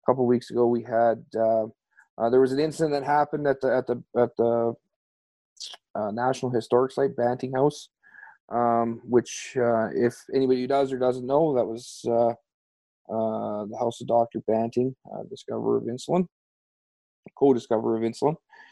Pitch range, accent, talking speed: 115-135 Hz, American, 170 wpm